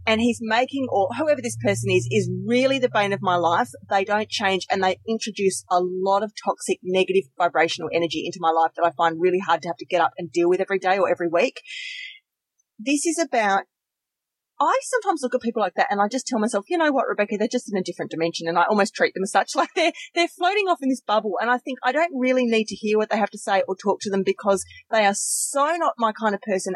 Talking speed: 260 wpm